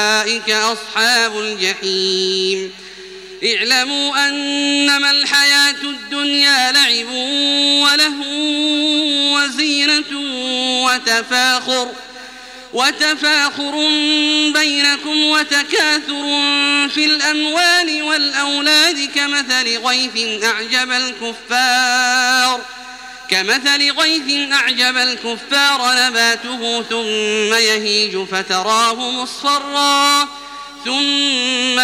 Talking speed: 55 wpm